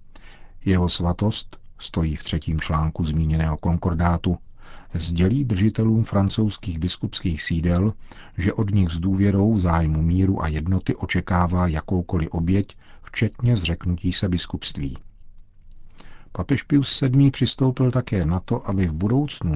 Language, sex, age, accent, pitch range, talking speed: Czech, male, 50-69, native, 85-100 Hz, 125 wpm